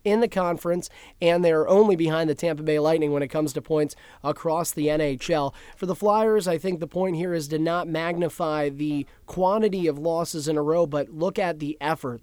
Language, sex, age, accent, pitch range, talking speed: English, male, 30-49, American, 150-185 Hz, 210 wpm